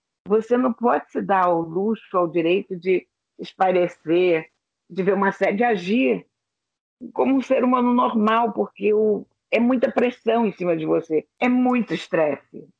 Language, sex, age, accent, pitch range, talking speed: Portuguese, female, 50-69, Brazilian, 170-225 Hz, 155 wpm